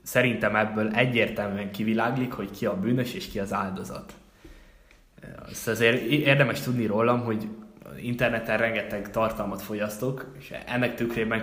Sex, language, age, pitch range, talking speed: male, Hungarian, 10-29, 105-120 Hz, 120 wpm